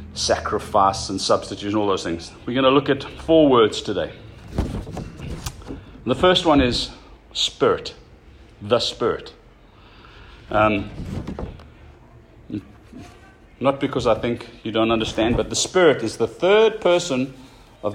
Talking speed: 125 wpm